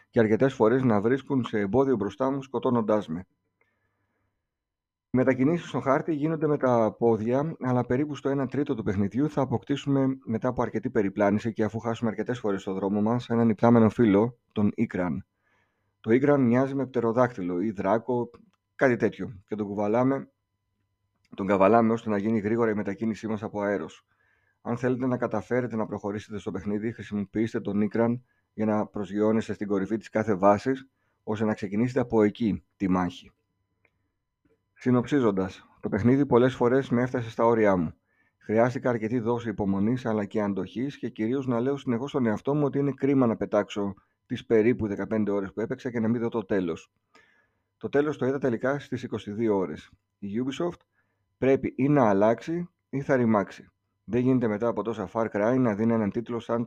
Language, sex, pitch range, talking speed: Greek, male, 105-125 Hz, 175 wpm